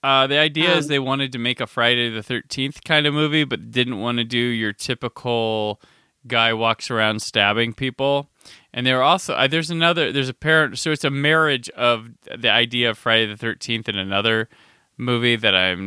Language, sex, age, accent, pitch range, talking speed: English, male, 20-39, American, 110-135 Hz, 200 wpm